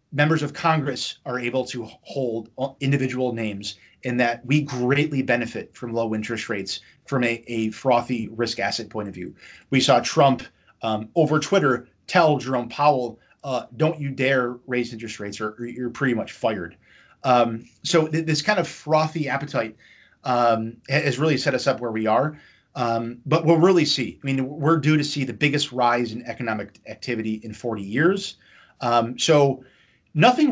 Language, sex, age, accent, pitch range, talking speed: English, male, 30-49, American, 115-145 Hz, 175 wpm